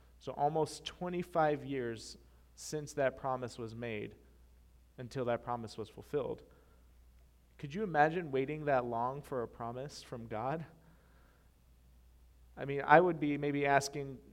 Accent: American